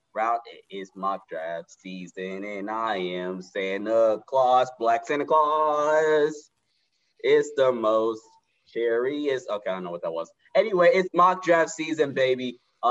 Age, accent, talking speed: 20-39, American, 150 wpm